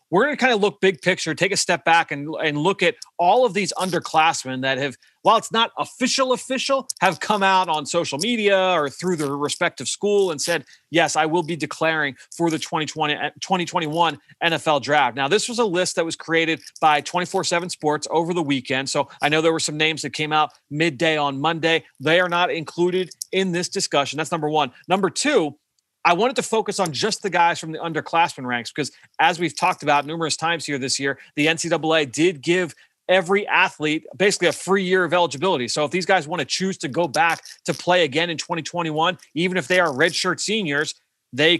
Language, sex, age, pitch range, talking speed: English, male, 30-49, 150-180 Hz, 210 wpm